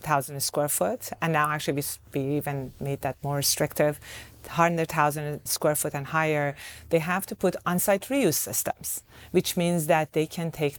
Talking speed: 165 wpm